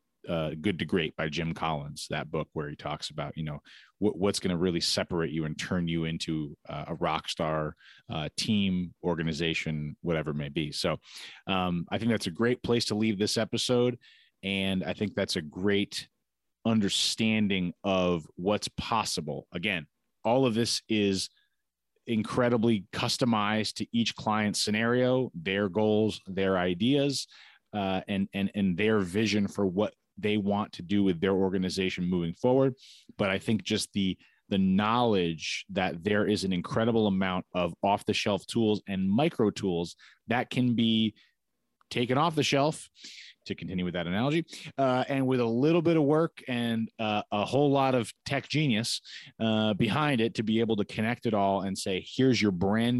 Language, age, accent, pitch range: English, 30-49, American, 95-115 Hz